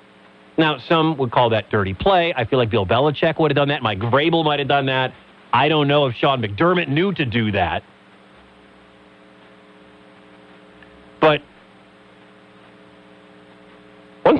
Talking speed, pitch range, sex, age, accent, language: 140 wpm, 115-180 Hz, male, 40-59, American, English